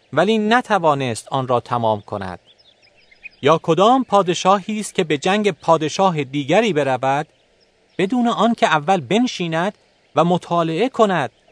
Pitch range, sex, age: 140-215 Hz, male, 30-49